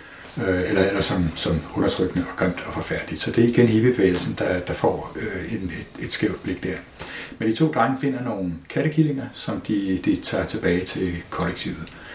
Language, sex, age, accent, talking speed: English, male, 60-79, Danish, 190 wpm